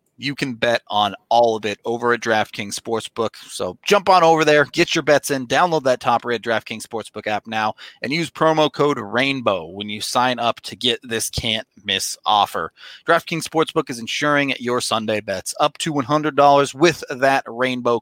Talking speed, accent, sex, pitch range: 185 wpm, American, male, 120-155 Hz